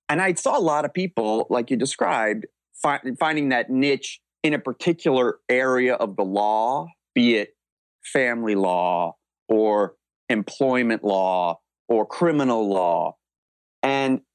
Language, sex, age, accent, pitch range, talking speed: English, male, 30-49, American, 105-135 Hz, 135 wpm